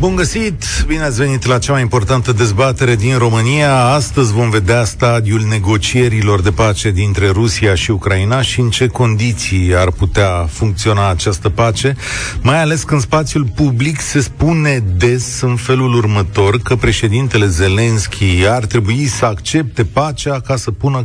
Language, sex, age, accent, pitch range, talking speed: Romanian, male, 40-59, native, 100-130 Hz, 155 wpm